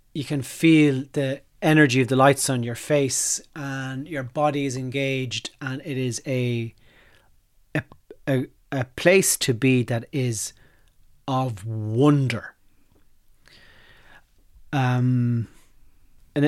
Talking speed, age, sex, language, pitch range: 115 wpm, 30-49, male, English, 120-145 Hz